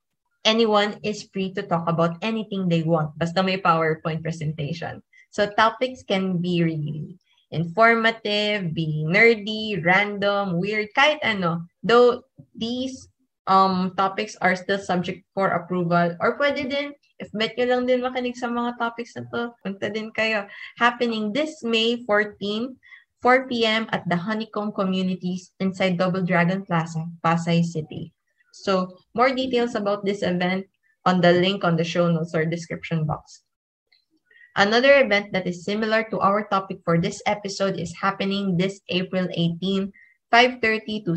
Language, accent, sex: English, Filipino, female